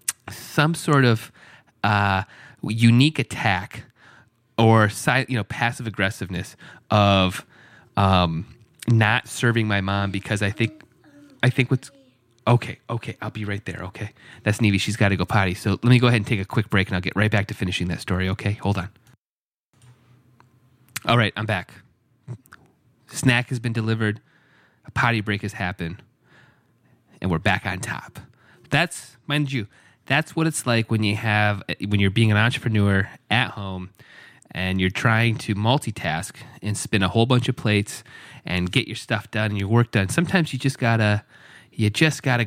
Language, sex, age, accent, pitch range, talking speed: English, male, 30-49, American, 100-125 Hz, 170 wpm